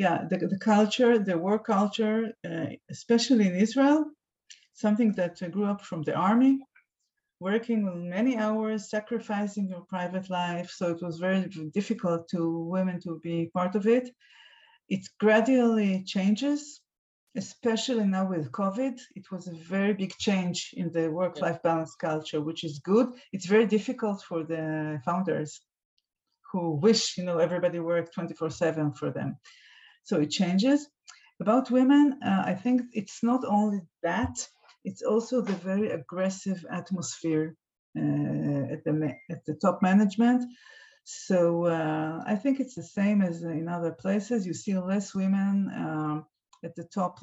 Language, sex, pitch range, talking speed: English, female, 170-225 Hz, 145 wpm